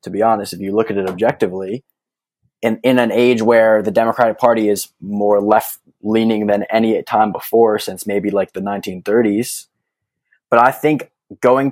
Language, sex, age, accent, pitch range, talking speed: English, male, 20-39, American, 105-125 Hz, 175 wpm